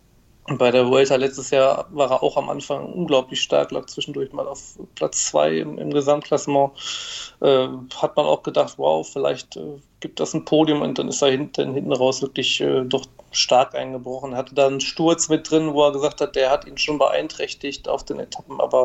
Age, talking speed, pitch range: 40-59, 205 wpm, 130-155 Hz